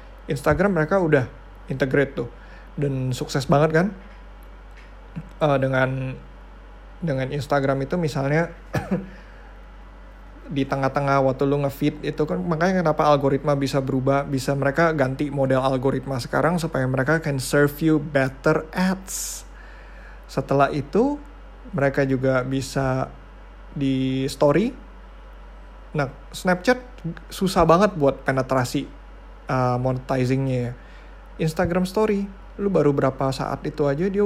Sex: male